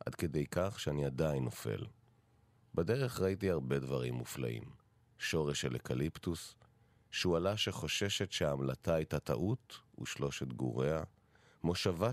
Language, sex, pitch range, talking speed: Hebrew, male, 80-115 Hz, 110 wpm